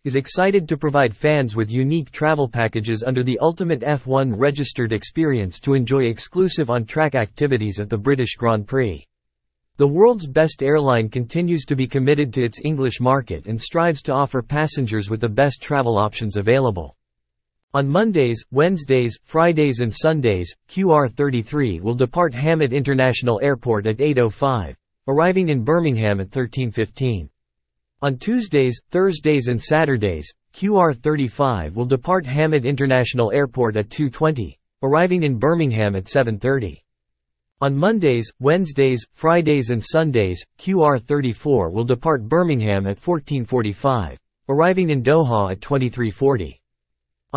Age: 40-59